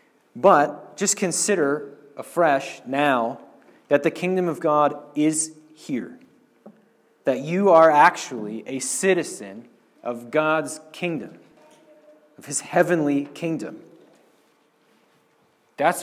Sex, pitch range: male, 145-180 Hz